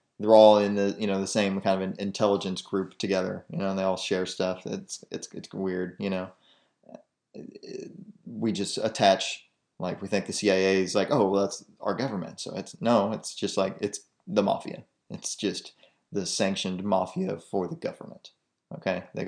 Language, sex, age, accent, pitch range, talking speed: English, male, 20-39, American, 95-105 Hz, 190 wpm